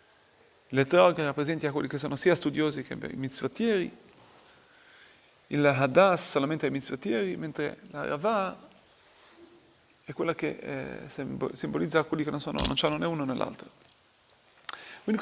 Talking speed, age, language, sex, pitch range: 130 wpm, 30-49, Italian, male, 150-200 Hz